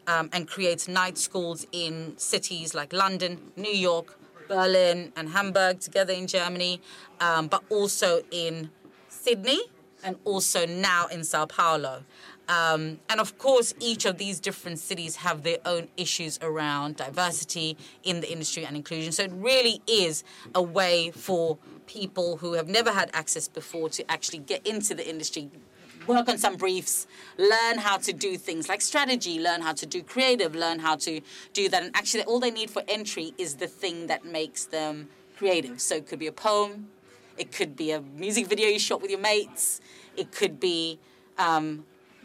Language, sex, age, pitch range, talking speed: English, female, 30-49, 160-205 Hz, 175 wpm